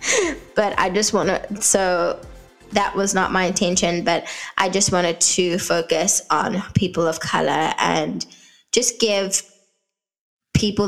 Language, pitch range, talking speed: English, 180-210 Hz, 140 wpm